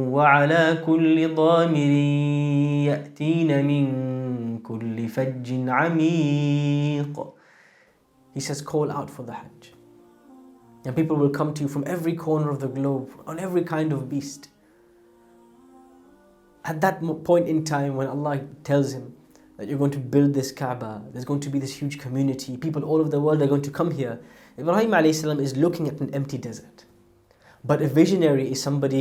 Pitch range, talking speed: 130-155 Hz, 150 wpm